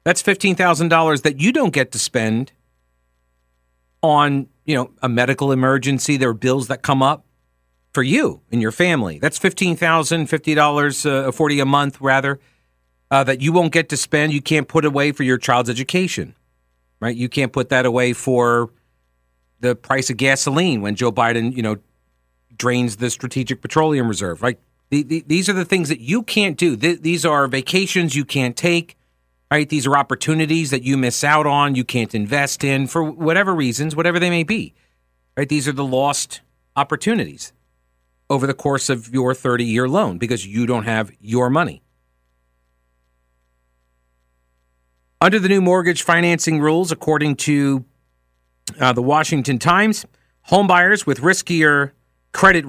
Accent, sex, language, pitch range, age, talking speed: American, male, English, 110-160 Hz, 50-69, 165 wpm